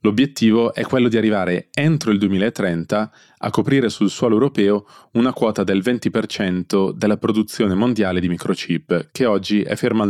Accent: native